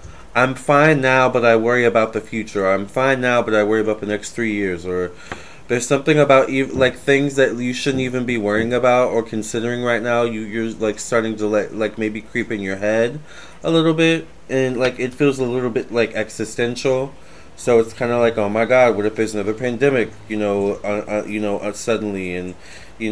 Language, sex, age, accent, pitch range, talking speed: English, male, 20-39, American, 105-125 Hz, 220 wpm